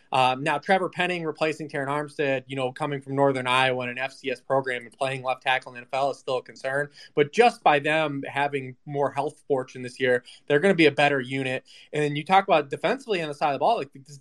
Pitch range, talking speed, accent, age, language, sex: 135-160 Hz, 250 wpm, American, 20-39, English, male